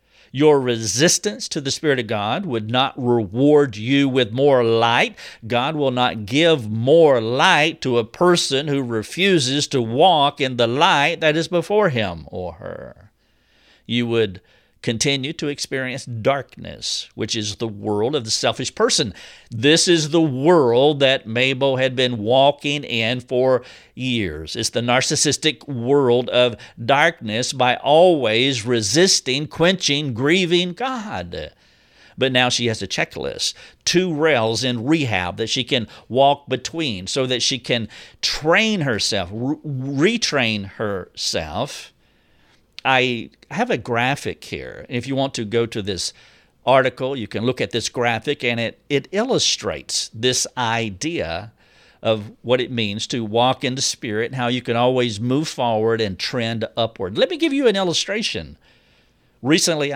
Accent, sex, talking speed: American, male, 150 wpm